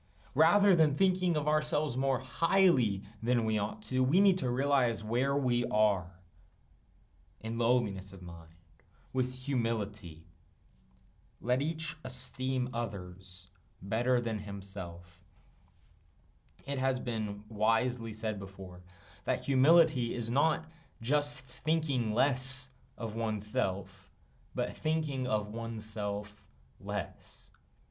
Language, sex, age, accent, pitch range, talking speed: English, male, 20-39, American, 105-150 Hz, 110 wpm